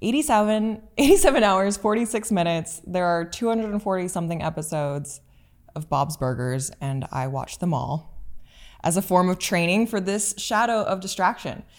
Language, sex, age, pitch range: English, female, 20-39, 150-195 Hz